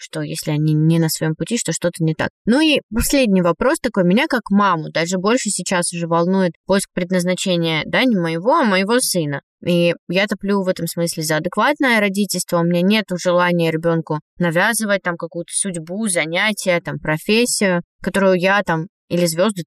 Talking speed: 175 wpm